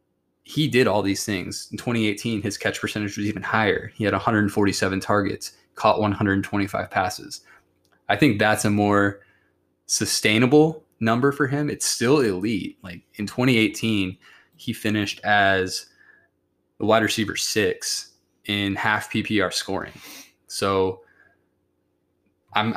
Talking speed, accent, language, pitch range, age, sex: 125 wpm, American, English, 95-110 Hz, 20-39, male